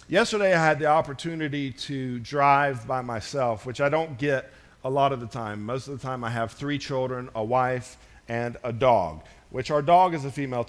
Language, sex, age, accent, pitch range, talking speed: English, male, 40-59, American, 130-165 Hz, 210 wpm